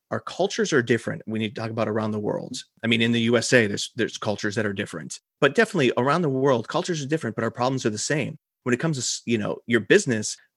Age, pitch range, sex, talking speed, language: 30-49, 115-145 Hz, male, 250 wpm, English